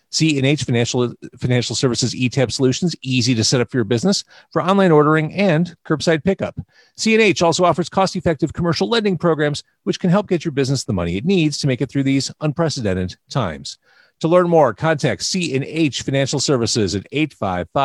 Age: 40-59